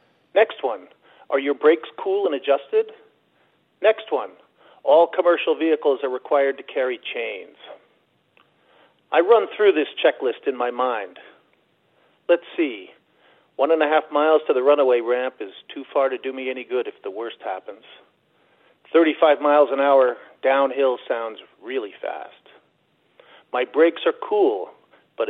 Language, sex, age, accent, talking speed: English, male, 40-59, American, 145 wpm